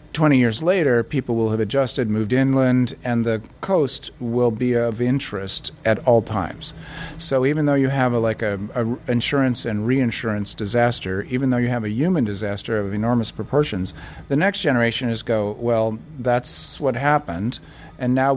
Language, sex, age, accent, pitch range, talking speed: English, male, 50-69, American, 110-135 Hz, 175 wpm